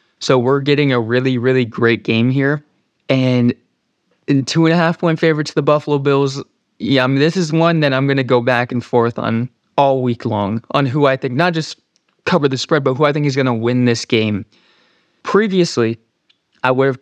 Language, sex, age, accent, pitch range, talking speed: English, male, 20-39, American, 120-140 Hz, 215 wpm